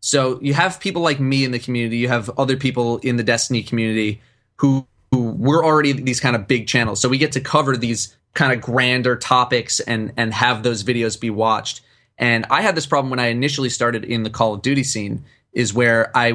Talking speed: 225 wpm